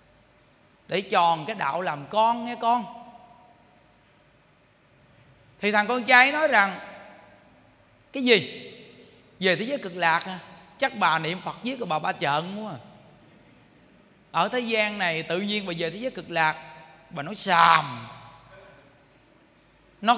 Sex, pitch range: male, 165-240 Hz